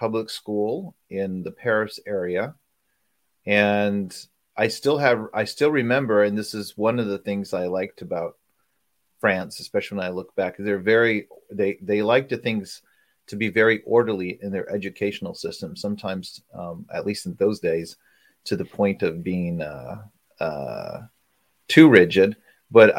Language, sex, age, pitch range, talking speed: English, male, 30-49, 95-110 Hz, 160 wpm